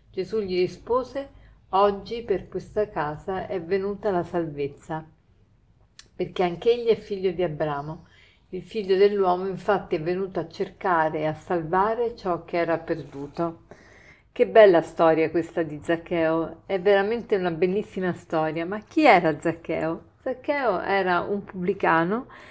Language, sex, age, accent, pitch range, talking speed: Italian, female, 50-69, native, 170-215 Hz, 140 wpm